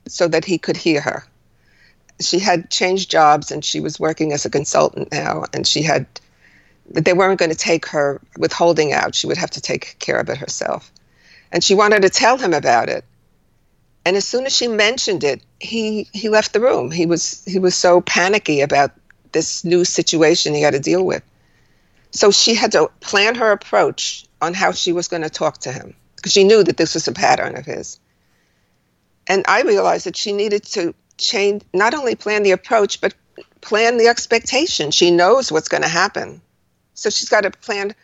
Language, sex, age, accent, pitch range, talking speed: English, female, 50-69, American, 170-215 Hz, 200 wpm